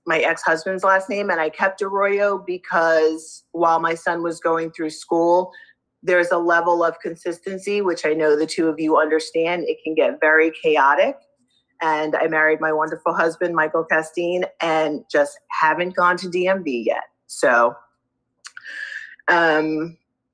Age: 30-49